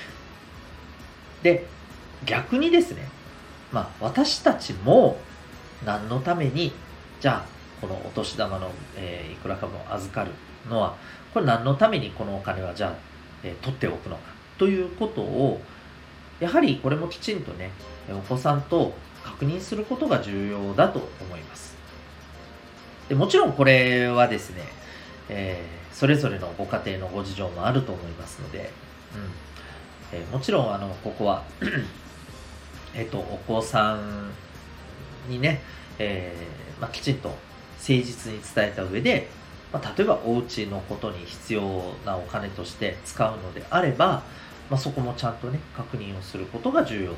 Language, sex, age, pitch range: Japanese, male, 40-59, 85-125 Hz